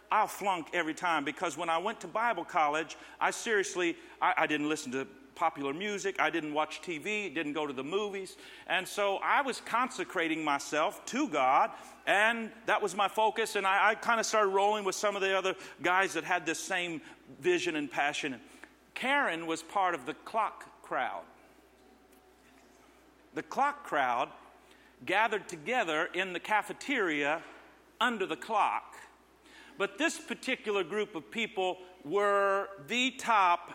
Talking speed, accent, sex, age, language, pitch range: 155 wpm, American, male, 50-69, English, 170-225 Hz